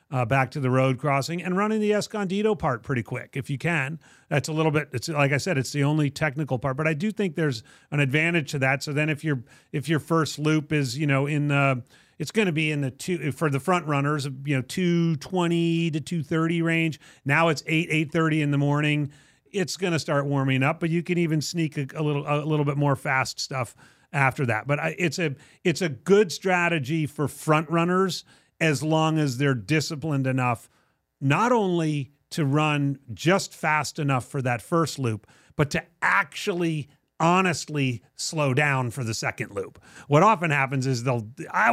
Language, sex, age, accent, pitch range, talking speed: English, male, 40-59, American, 135-165 Hz, 205 wpm